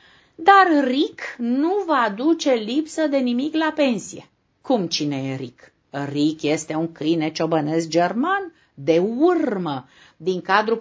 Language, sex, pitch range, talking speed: Romanian, female, 155-225 Hz, 135 wpm